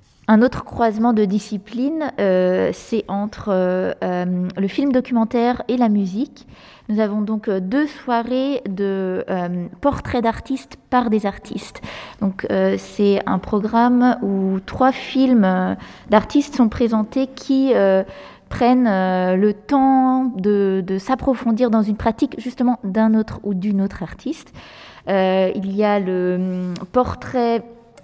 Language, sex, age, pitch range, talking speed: French, female, 20-39, 190-235 Hz, 140 wpm